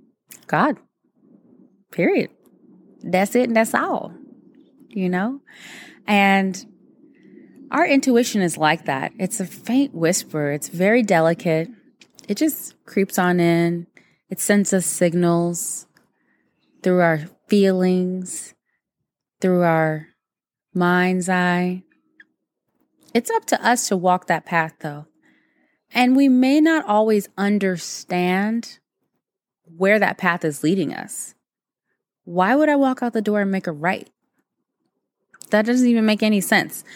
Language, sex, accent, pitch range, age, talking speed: English, female, American, 165-225 Hz, 20-39, 125 wpm